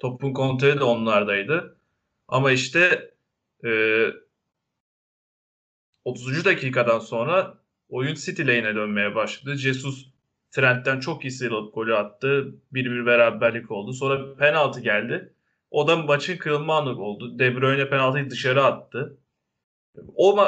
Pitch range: 125-150 Hz